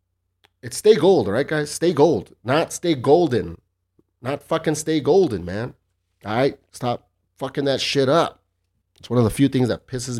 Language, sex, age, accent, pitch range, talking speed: English, male, 30-49, American, 100-130 Hz, 180 wpm